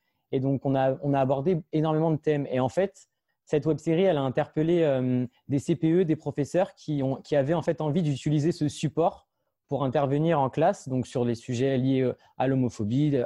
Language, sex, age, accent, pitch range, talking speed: French, male, 20-39, French, 130-155 Hz, 205 wpm